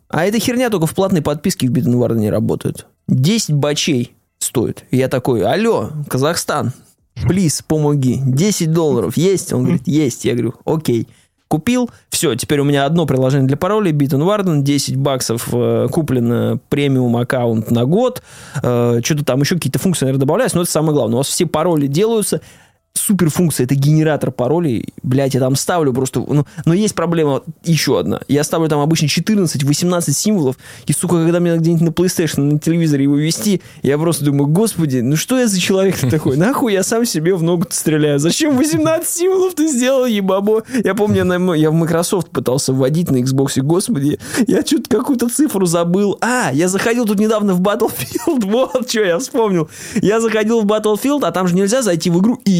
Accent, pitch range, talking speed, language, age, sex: native, 140-205 Hz, 180 wpm, Russian, 20-39, male